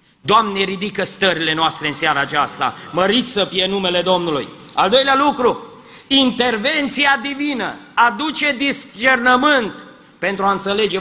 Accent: native